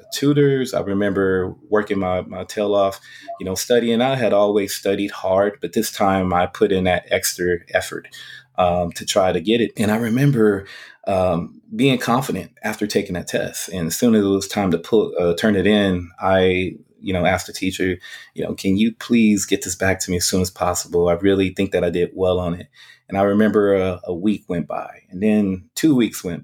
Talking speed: 220 wpm